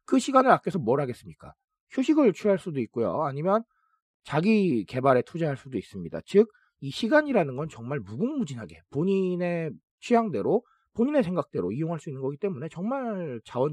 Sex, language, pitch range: male, Korean, 145-220 Hz